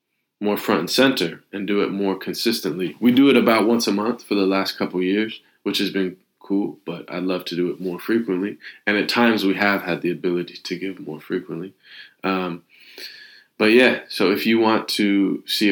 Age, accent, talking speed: 20-39, American, 210 wpm